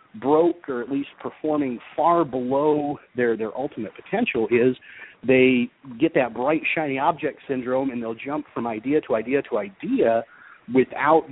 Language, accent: English, American